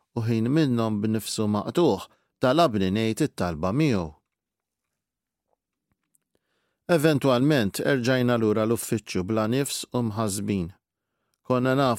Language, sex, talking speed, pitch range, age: English, male, 70 wpm, 100-130 Hz, 50-69